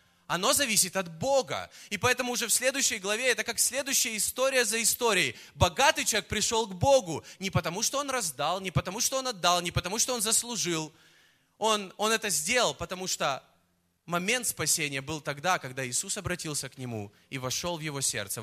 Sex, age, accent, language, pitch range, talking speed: male, 20-39, native, Russian, 170-235 Hz, 180 wpm